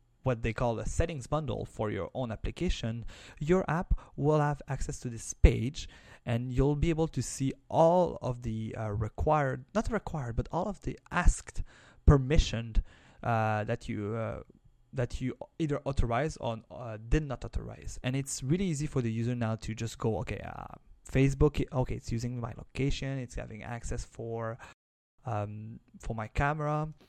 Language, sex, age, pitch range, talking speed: English, male, 20-39, 115-150 Hz, 165 wpm